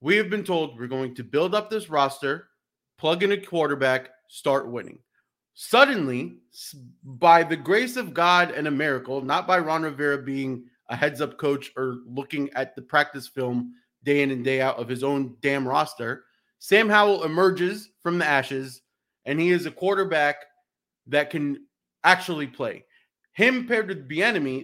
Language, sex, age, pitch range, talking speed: English, male, 30-49, 130-185 Hz, 170 wpm